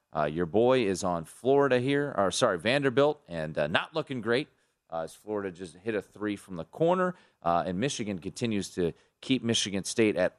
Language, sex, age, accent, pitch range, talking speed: English, male, 30-49, American, 95-130 Hz, 195 wpm